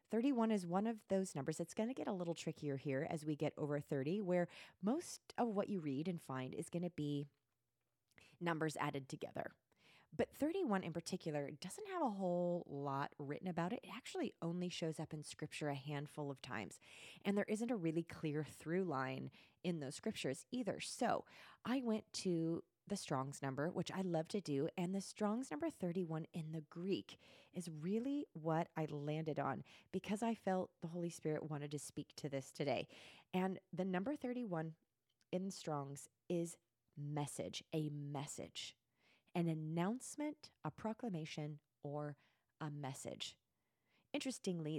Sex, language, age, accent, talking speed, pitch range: female, English, 30-49, American, 165 wpm, 145-190 Hz